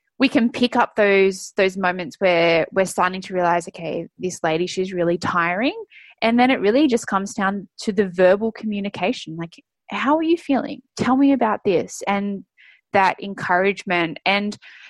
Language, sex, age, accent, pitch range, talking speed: English, female, 20-39, Australian, 185-250 Hz, 170 wpm